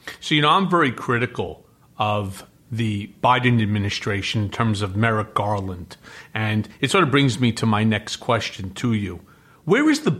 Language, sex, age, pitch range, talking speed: English, male, 40-59, 125-200 Hz, 175 wpm